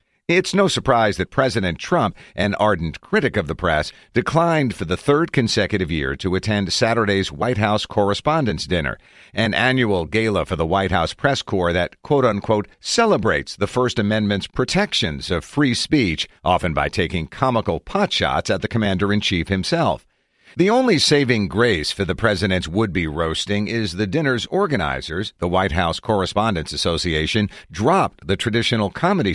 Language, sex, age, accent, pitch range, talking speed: English, male, 50-69, American, 90-125 Hz, 155 wpm